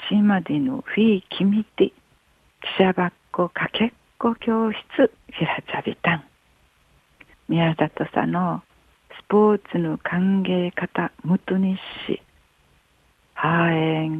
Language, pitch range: Japanese, 130-205 Hz